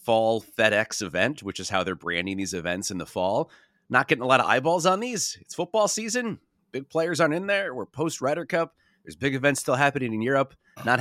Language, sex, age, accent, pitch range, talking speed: English, male, 30-49, American, 105-160 Hz, 220 wpm